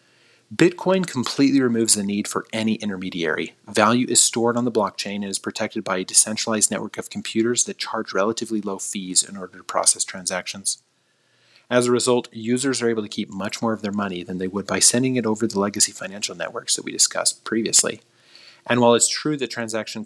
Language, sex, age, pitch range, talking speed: English, male, 30-49, 100-120 Hz, 200 wpm